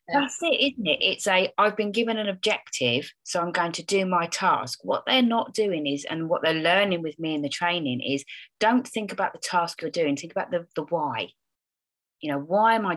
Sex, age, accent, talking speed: female, 30-49, British, 230 wpm